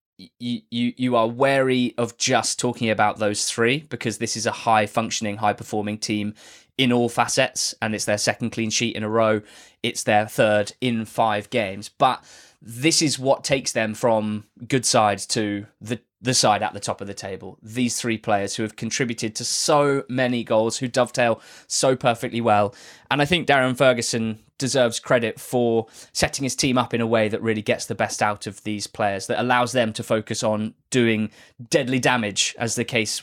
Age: 20-39